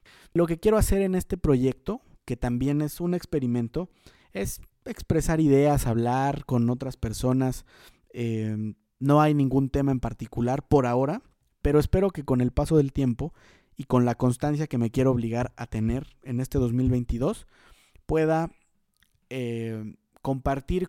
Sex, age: male, 30-49